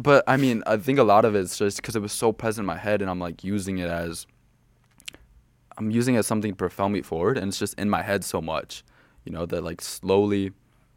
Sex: male